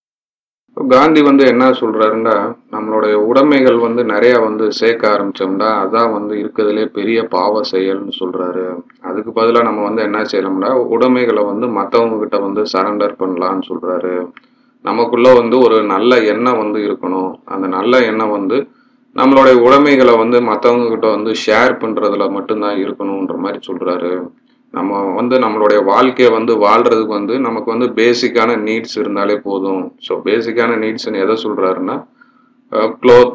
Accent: native